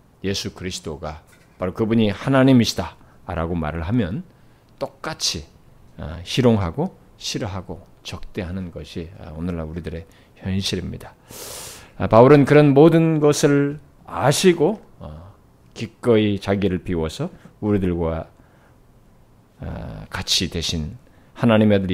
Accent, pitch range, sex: native, 90-130 Hz, male